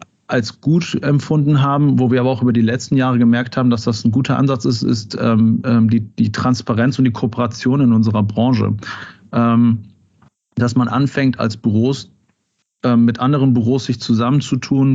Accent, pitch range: German, 115-125 Hz